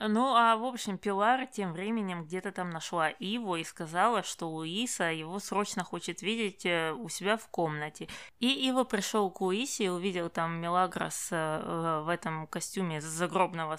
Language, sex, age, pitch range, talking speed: Russian, female, 20-39, 165-210 Hz, 155 wpm